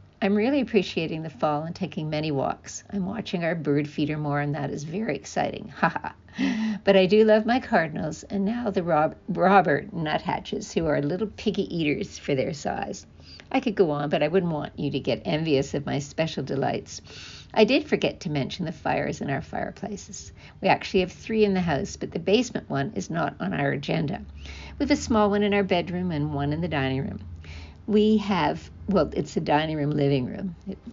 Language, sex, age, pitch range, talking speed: English, female, 60-79, 150-210 Hz, 205 wpm